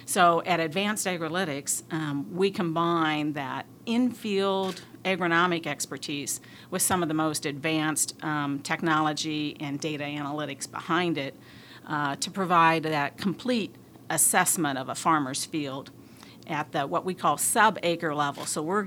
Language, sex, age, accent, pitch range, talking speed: English, female, 50-69, American, 150-175 Hz, 135 wpm